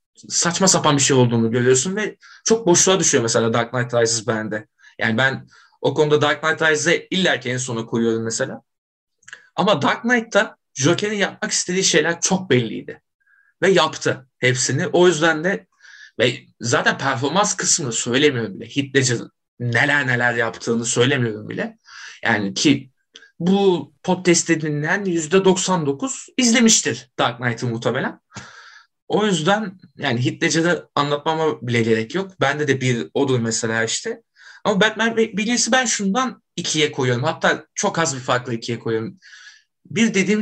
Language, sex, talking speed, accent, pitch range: Turkish, male, 140 wpm, native, 130-190 Hz